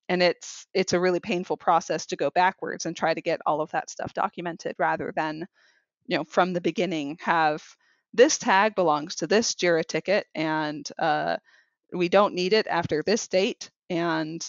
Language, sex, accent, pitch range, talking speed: English, female, American, 160-185 Hz, 180 wpm